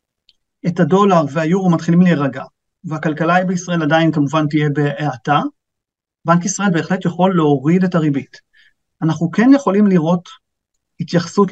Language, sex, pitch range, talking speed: Hebrew, male, 155-195 Hz, 120 wpm